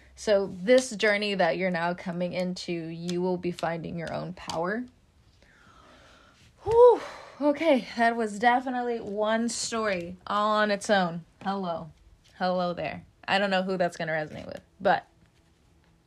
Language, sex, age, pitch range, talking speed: English, female, 20-39, 175-230 Hz, 145 wpm